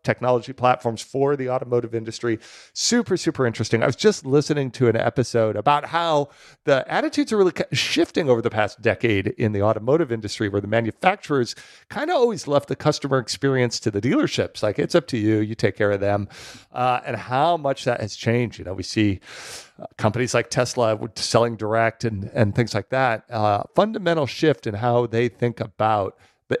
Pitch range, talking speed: 105-135 Hz, 185 wpm